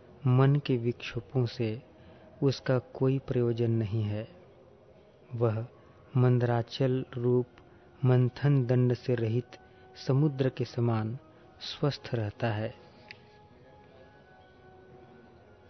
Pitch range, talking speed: 120-135 Hz, 85 wpm